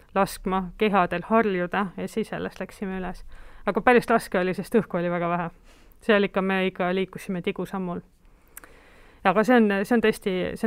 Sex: female